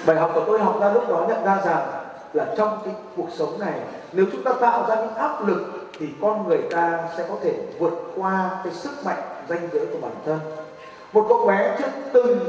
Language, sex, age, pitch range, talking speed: Vietnamese, male, 30-49, 165-235 Hz, 225 wpm